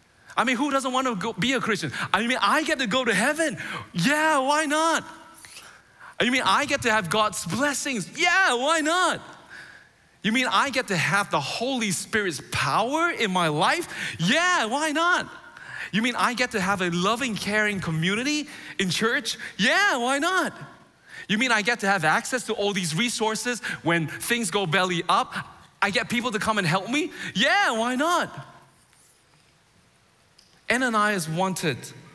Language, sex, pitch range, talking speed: English, male, 160-240 Hz, 175 wpm